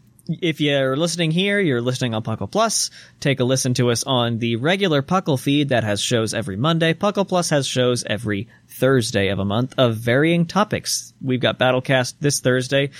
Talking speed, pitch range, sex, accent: 190 wpm, 115-160 Hz, male, American